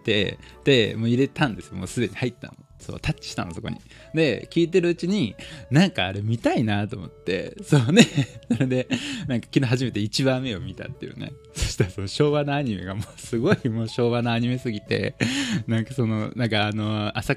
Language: Japanese